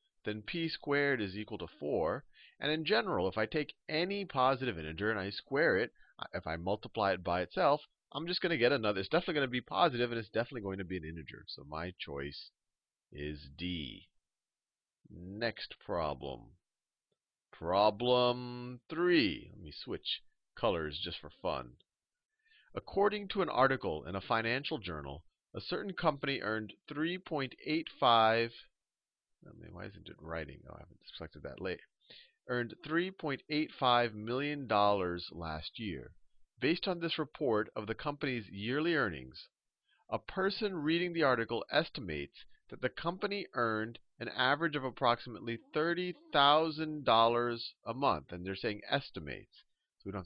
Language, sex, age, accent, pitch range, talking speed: English, male, 40-59, American, 100-155 Hz, 145 wpm